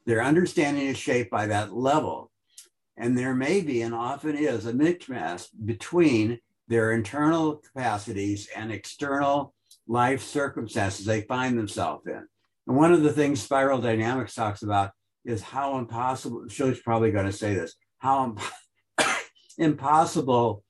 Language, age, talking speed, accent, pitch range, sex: English, 60-79, 140 wpm, American, 110-140 Hz, male